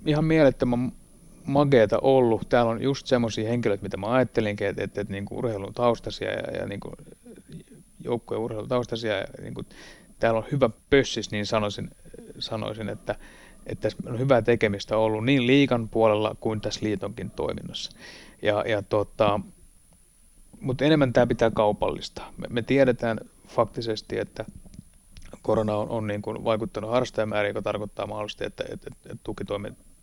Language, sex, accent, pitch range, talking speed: Finnish, male, native, 105-115 Hz, 150 wpm